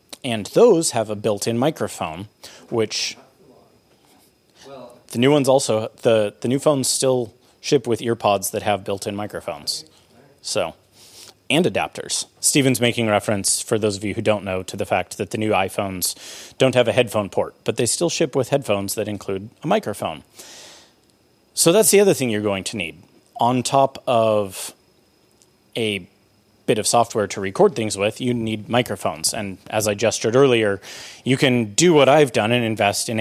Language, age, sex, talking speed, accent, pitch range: English, 30-49, male, 170 wpm, American, 105-130 Hz